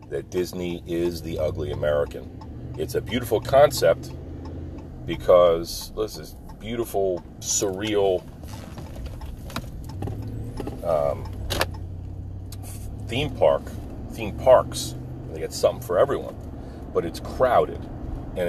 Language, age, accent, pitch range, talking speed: English, 40-59, American, 85-105 Hz, 100 wpm